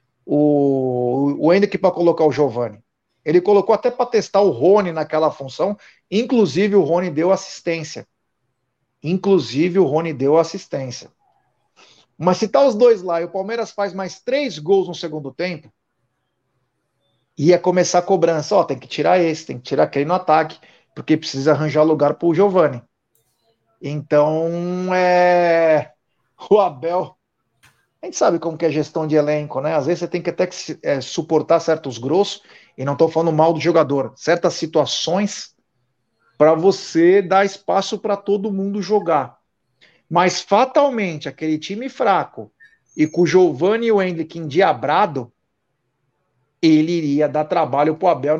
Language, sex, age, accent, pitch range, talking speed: Portuguese, male, 50-69, Brazilian, 150-190 Hz, 155 wpm